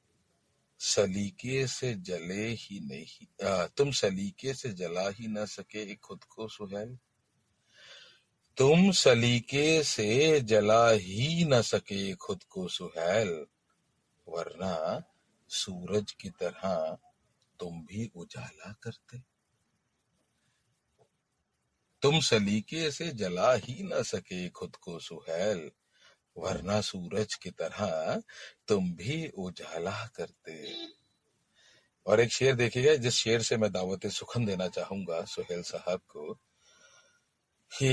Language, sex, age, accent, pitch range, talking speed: Hindi, male, 50-69, native, 100-140 Hz, 105 wpm